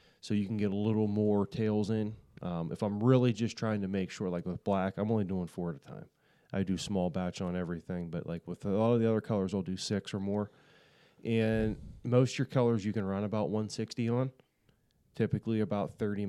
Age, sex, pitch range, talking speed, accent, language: 30-49, male, 95-115 Hz, 230 wpm, American, English